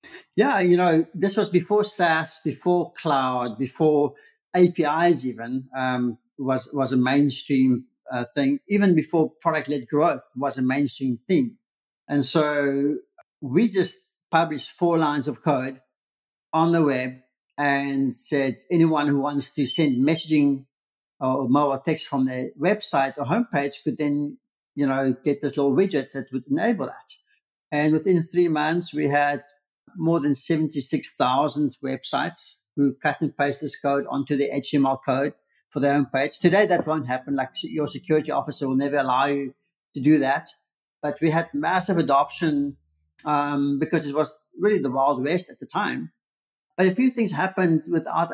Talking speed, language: 160 wpm, English